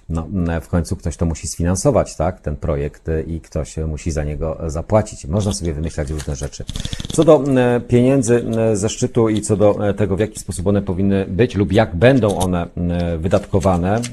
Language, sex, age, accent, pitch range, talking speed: Polish, male, 40-59, native, 85-110 Hz, 175 wpm